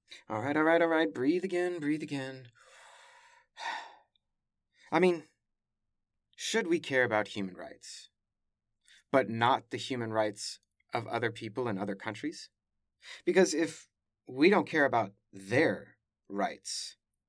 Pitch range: 125-200 Hz